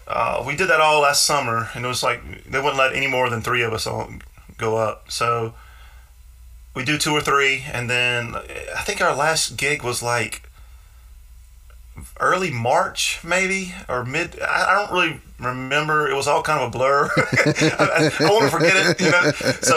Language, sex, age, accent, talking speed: English, male, 30-49, American, 190 wpm